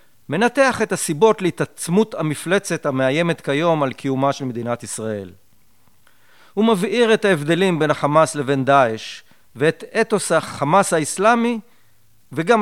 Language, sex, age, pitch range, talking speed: Hebrew, male, 40-59, 125-170 Hz, 120 wpm